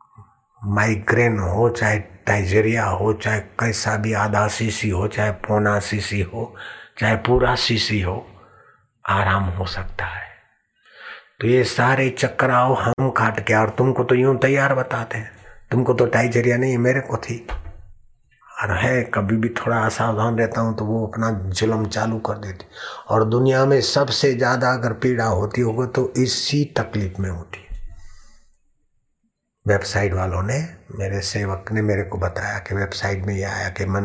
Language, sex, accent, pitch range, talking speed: Hindi, male, native, 100-115 Hz, 145 wpm